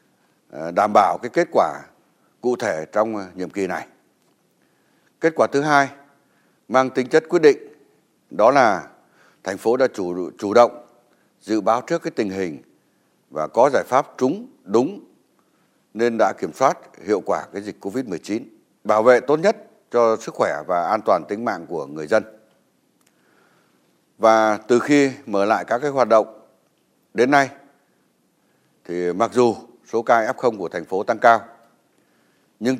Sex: male